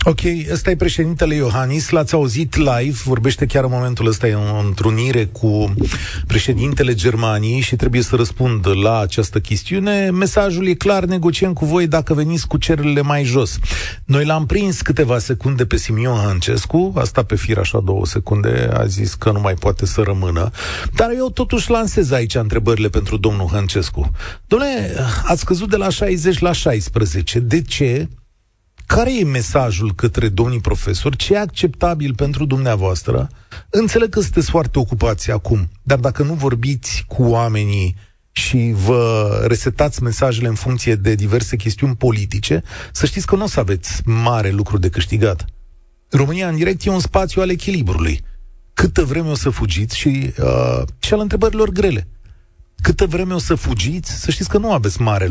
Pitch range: 100-155 Hz